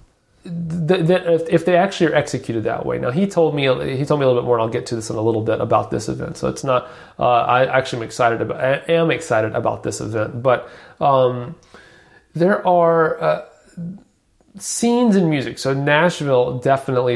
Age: 30-49